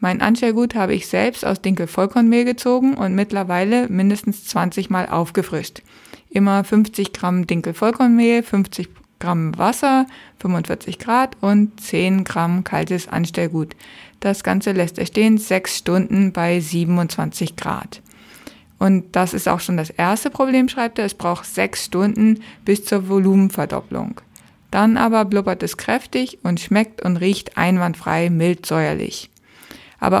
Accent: German